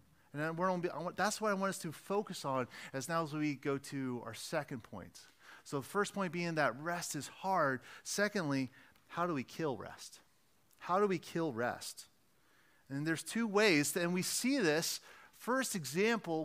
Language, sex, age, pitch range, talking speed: English, male, 30-49, 135-180 Hz, 175 wpm